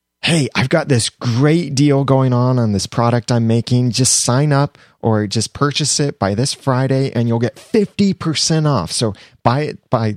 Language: English